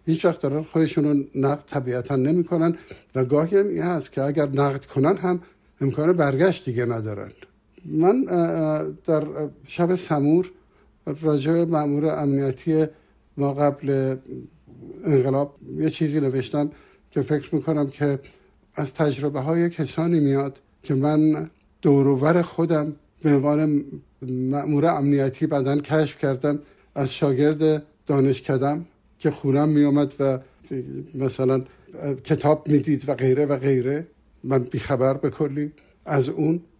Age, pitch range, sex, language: 60-79, 135-160 Hz, male, Persian